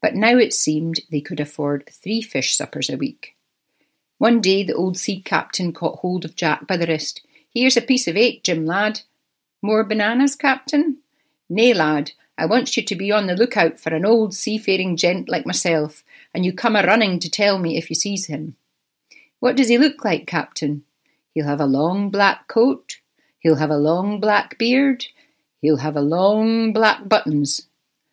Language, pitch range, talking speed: English, 160-220 Hz, 185 wpm